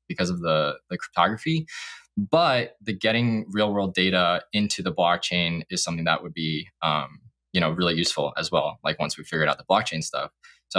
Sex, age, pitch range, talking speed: male, 20-39, 85-105 Hz, 195 wpm